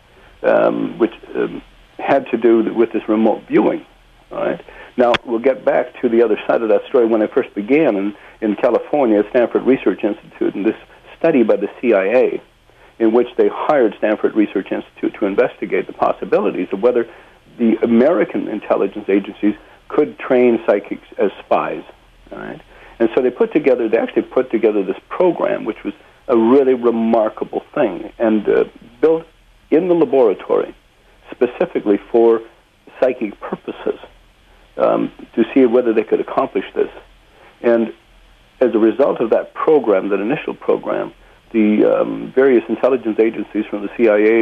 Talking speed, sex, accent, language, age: 155 wpm, male, American, English, 60-79